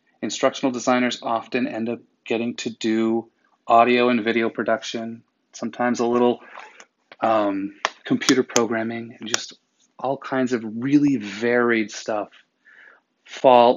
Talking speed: 120 wpm